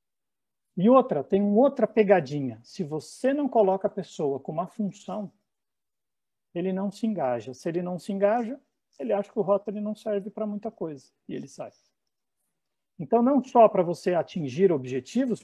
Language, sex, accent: Portuguese, male, Brazilian